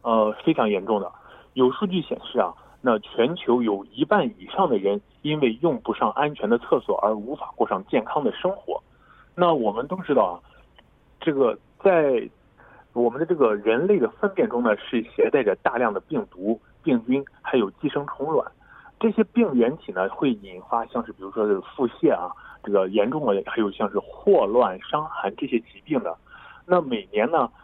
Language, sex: Korean, male